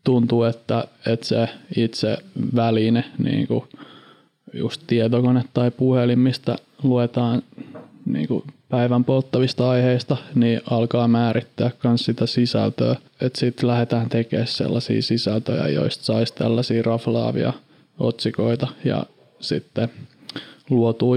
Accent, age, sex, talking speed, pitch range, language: native, 20-39, male, 100 wpm, 115-130 Hz, Finnish